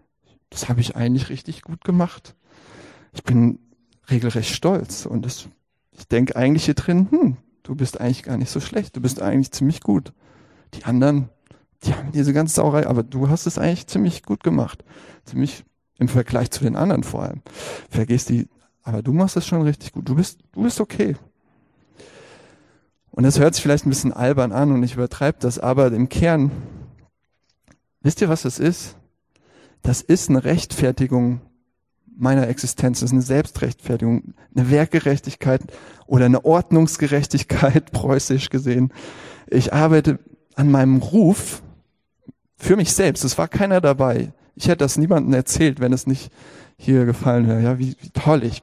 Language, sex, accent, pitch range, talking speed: German, male, German, 125-150 Hz, 165 wpm